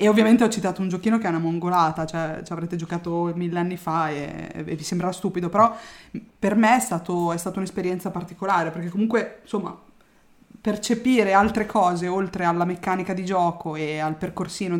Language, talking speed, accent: Italian, 185 wpm, native